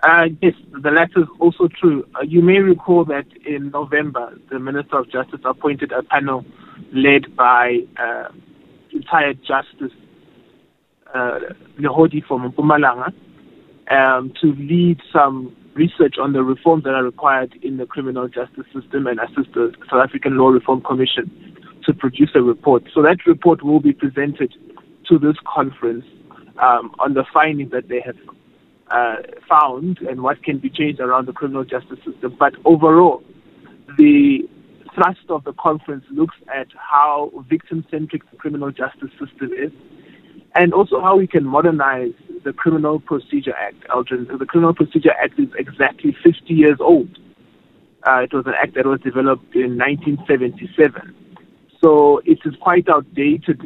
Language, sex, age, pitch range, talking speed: English, male, 20-39, 130-170 Hz, 155 wpm